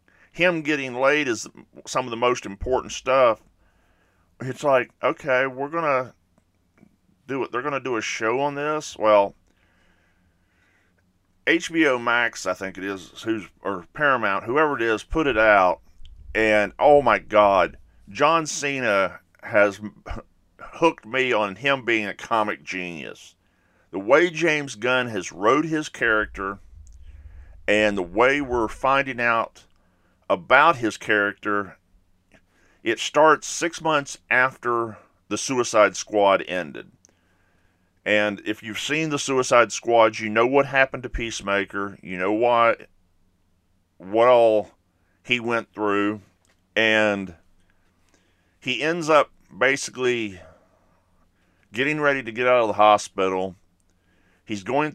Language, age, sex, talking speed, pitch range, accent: English, 50-69, male, 130 wpm, 90-125 Hz, American